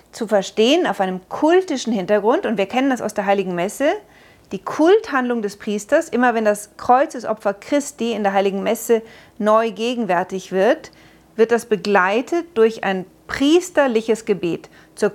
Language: German